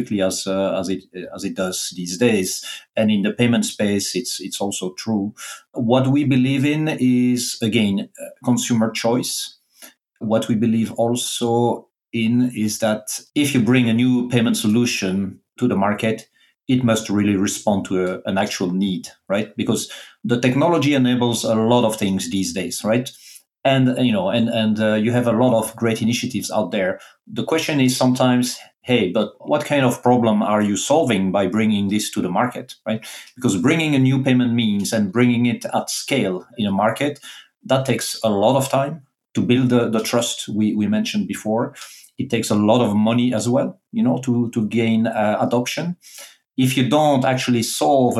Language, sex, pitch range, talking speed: English, male, 105-130 Hz, 180 wpm